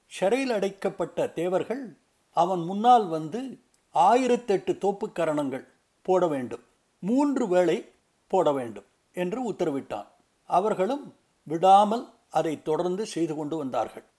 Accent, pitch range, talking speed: native, 175-235 Hz, 100 wpm